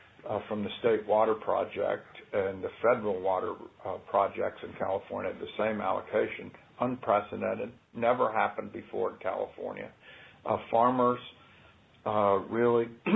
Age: 50-69